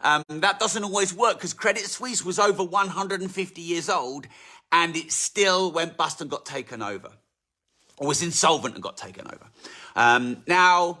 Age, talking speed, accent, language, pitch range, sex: 40-59, 170 wpm, British, English, 140-185 Hz, male